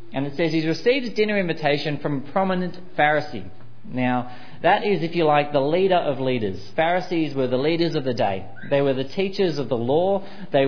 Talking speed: 210 wpm